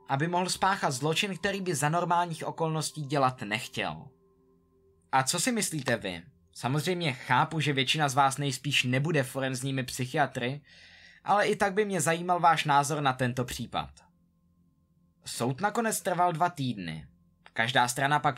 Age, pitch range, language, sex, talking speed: 20-39, 125-170 Hz, Czech, male, 145 wpm